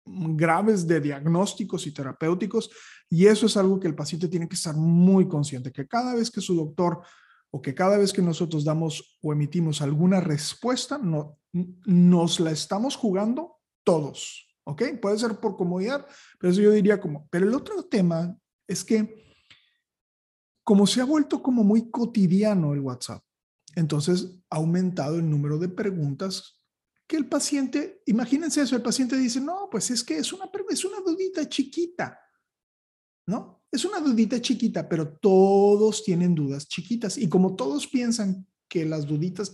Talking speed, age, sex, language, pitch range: 160 wpm, 40-59, male, Spanish, 165-225 Hz